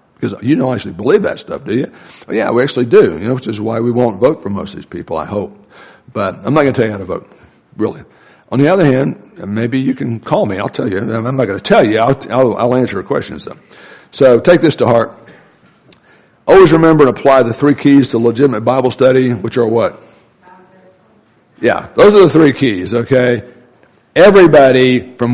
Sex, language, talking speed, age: male, English, 220 wpm, 60-79